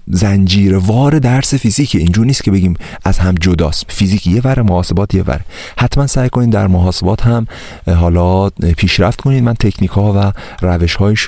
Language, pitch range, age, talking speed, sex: Persian, 85-100 Hz, 30-49, 165 wpm, male